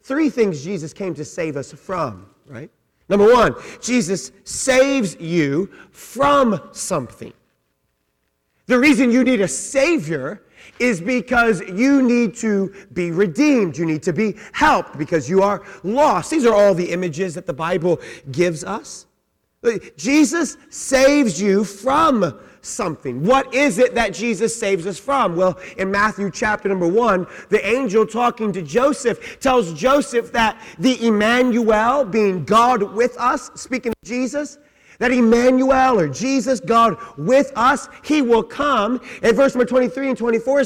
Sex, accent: male, American